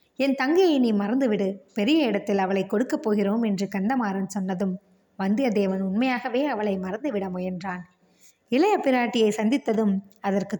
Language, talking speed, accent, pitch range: Tamil, 120 wpm, native, 200-260 Hz